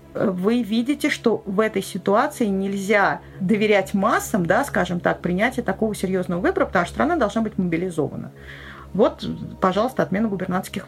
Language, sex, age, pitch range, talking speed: Russian, female, 40-59, 185-230 Hz, 145 wpm